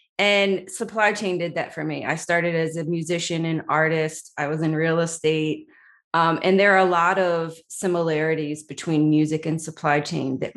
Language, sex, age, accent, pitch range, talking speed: English, female, 30-49, American, 155-180 Hz, 185 wpm